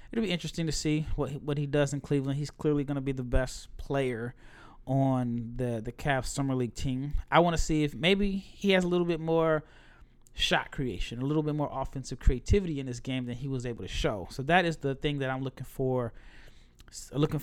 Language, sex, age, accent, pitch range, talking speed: English, male, 30-49, American, 130-160 Hz, 225 wpm